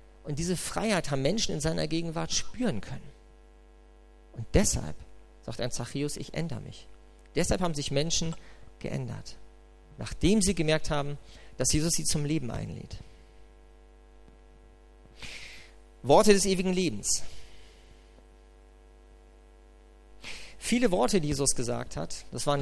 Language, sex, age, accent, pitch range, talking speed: German, male, 40-59, German, 110-175 Hz, 120 wpm